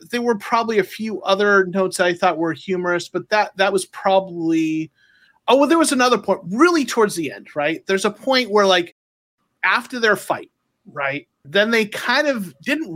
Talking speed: 195 wpm